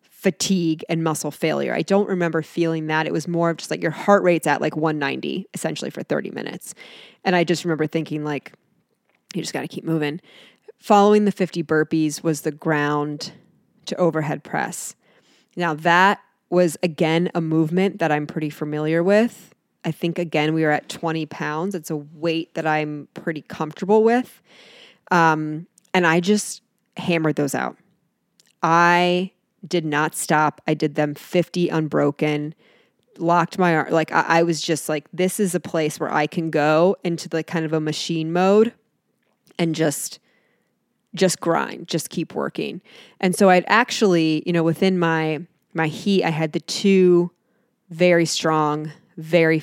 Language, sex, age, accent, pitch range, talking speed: English, female, 20-39, American, 155-185 Hz, 165 wpm